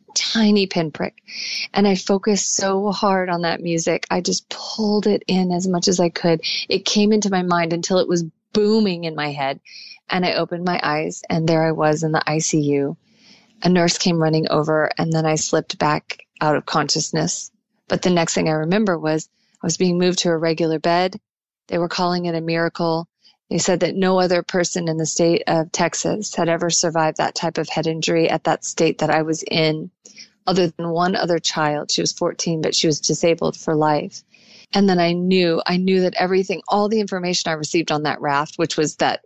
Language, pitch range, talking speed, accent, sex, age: English, 160-185 Hz, 210 wpm, American, female, 30-49